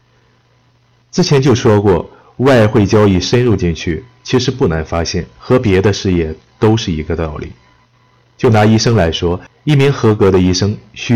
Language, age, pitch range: Chinese, 30-49, 90-125 Hz